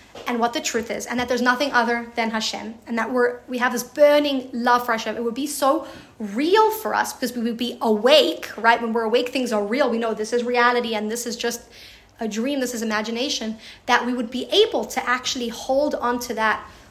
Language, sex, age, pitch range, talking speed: English, female, 30-49, 230-285 Hz, 235 wpm